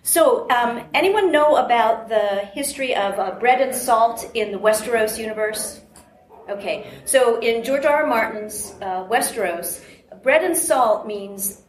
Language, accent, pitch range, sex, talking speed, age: English, American, 205-260 Hz, female, 150 wpm, 40-59